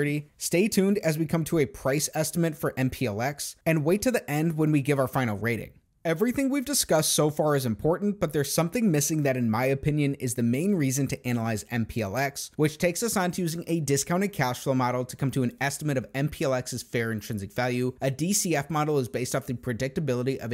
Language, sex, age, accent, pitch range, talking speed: English, male, 30-49, American, 130-165 Hz, 215 wpm